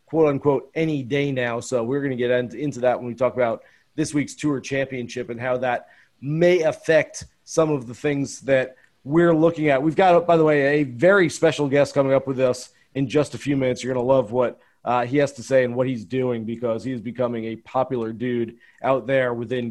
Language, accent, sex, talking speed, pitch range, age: English, American, male, 230 wpm, 130-165 Hz, 30-49